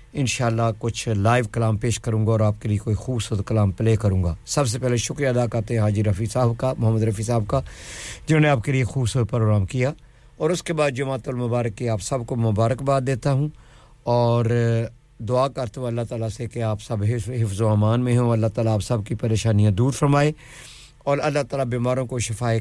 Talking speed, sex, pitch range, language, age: 165 wpm, male, 110-130 Hz, English, 50-69